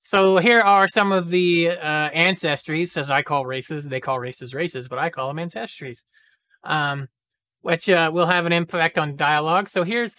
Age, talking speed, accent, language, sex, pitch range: 30-49, 190 wpm, American, English, male, 150-185 Hz